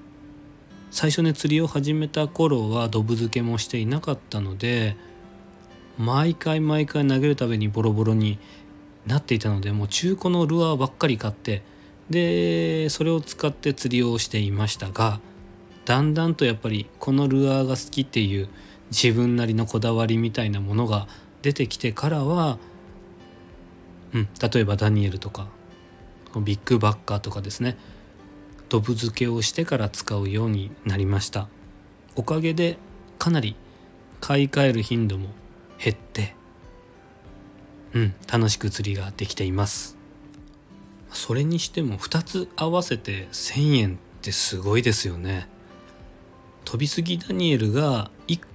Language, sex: Japanese, male